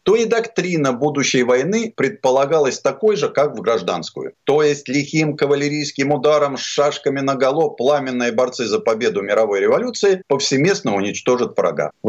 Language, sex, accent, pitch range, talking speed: Russian, male, native, 140-220 Hz, 150 wpm